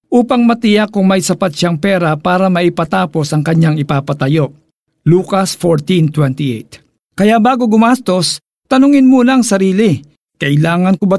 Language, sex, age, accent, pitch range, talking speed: Filipino, male, 50-69, native, 155-210 Hz, 130 wpm